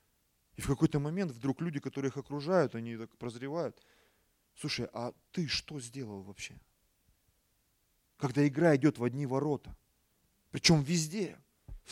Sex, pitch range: male, 120-185 Hz